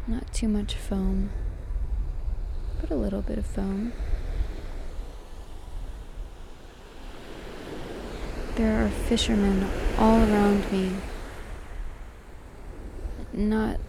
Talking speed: 75 wpm